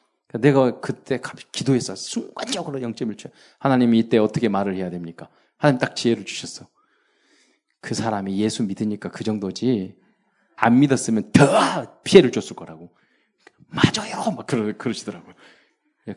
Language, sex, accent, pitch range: Korean, male, native, 115-180 Hz